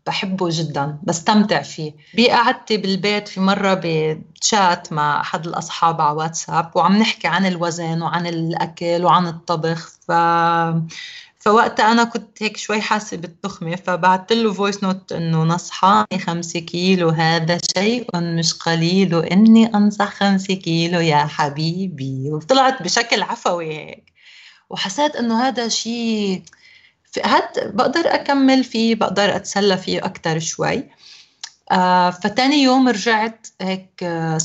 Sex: female